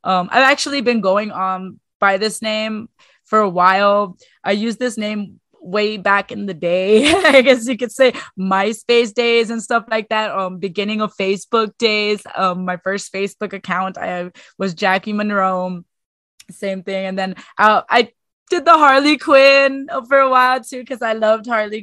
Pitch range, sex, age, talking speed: 185-235 Hz, female, 20-39, 180 wpm